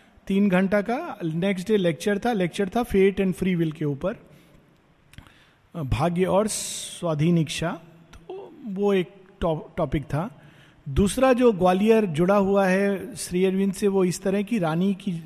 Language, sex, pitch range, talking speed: Hindi, male, 150-195 Hz, 155 wpm